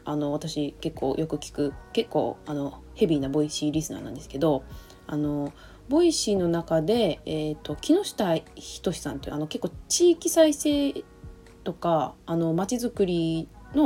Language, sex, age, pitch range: Japanese, female, 20-39, 150-250 Hz